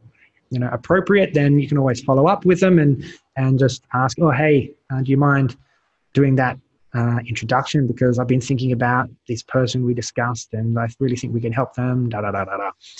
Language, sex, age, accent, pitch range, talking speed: English, male, 20-39, Australian, 120-150 Hz, 195 wpm